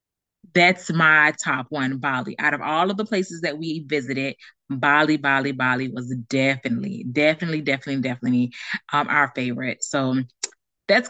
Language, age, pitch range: English, 20-39, 150-190 Hz